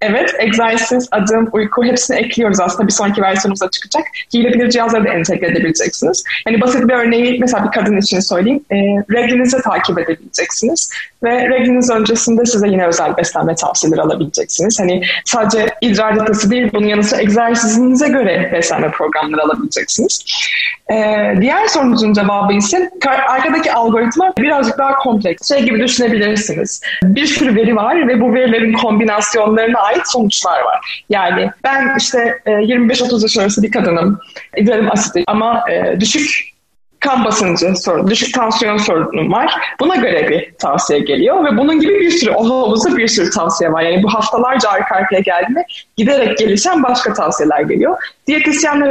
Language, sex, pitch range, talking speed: Turkish, female, 205-250 Hz, 145 wpm